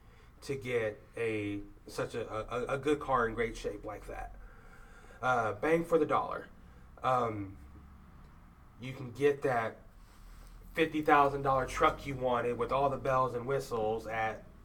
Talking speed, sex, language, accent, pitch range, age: 145 wpm, male, English, American, 120-155 Hz, 30-49